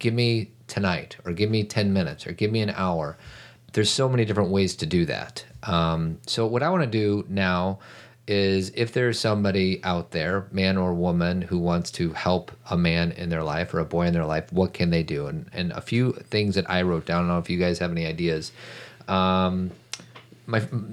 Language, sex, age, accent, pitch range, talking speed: English, male, 30-49, American, 90-115 Hz, 220 wpm